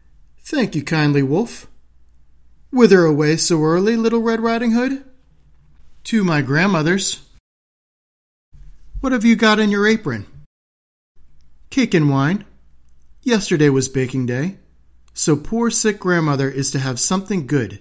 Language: English